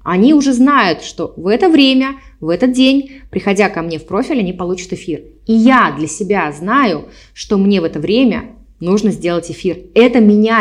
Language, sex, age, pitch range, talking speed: Russian, female, 20-39, 190-260 Hz, 185 wpm